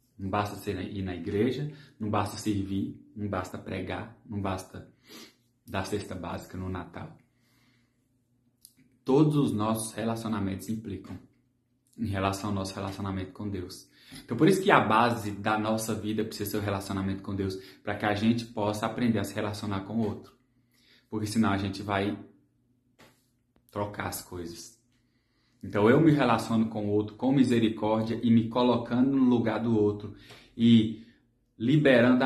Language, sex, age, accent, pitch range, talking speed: Portuguese, male, 20-39, Brazilian, 100-120 Hz, 155 wpm